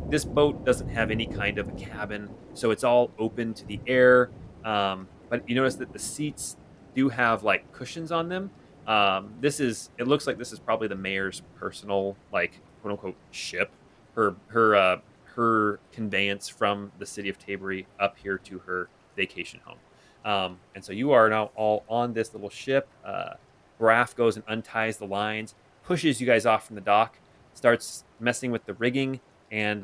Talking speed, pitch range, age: 185 wpm, 100-120 Hz, 30-49